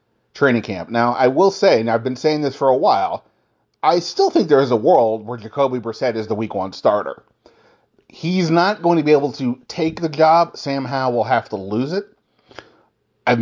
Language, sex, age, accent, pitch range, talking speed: English, male, 30-49, American, 115-135 Hz, 210 wpm